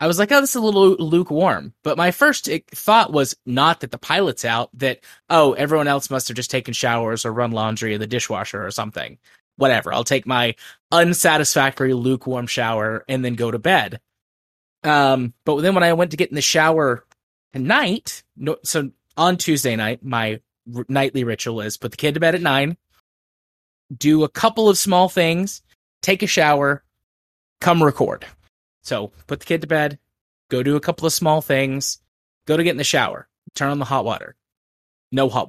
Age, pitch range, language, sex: 20-39, 115-150 Hz, English, male